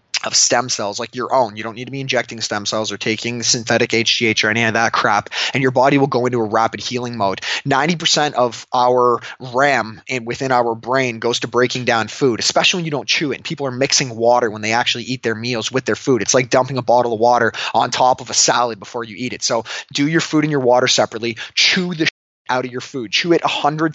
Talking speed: 245 wpm